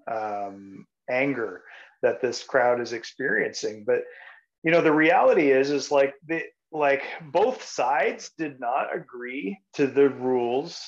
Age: 30-49